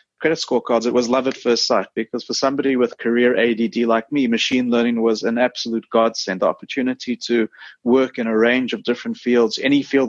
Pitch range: 110-125 Hz